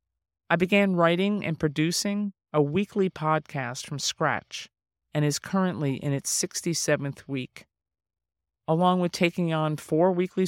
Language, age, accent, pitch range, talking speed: English, 40-59, American, 145-175 Hz, 130 wpm